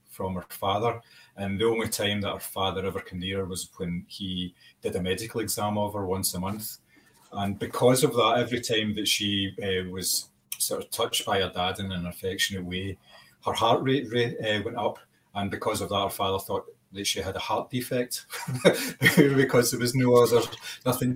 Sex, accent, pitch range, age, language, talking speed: male, British, 90-120 Hz, 30-49, English, 200 wpm